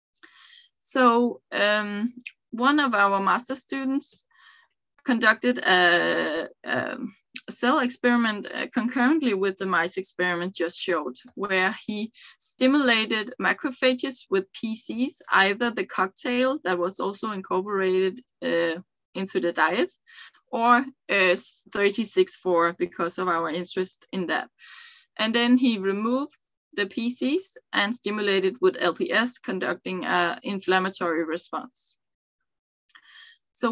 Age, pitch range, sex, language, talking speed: 20-39, 185-255 Hz, female, English, 105 wpm